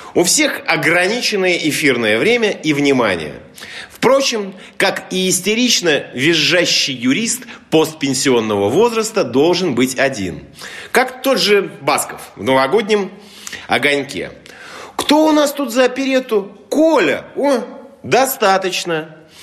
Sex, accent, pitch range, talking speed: male, native, 155-225 Hz, 105 wpm